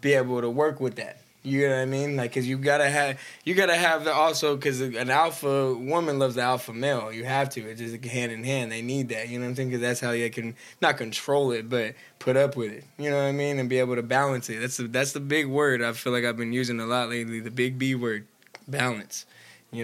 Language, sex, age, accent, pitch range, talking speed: English, male, 10-29, American, 115-140 Hz, 275 wpm